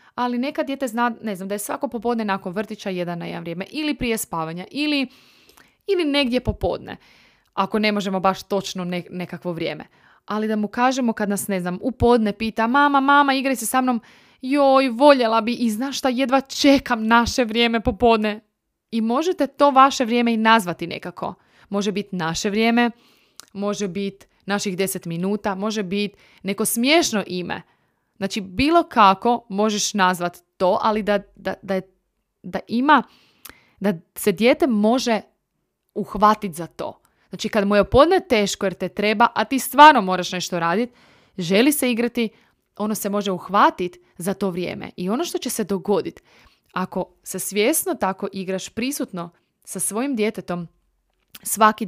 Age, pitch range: 20-39, 195-245 Hz